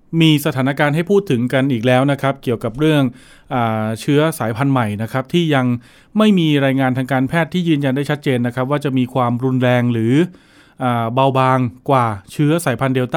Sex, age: male, 20-39